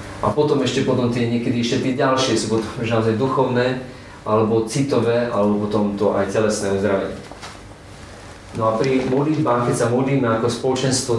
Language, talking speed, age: Slovak, 160 wpm, 40-59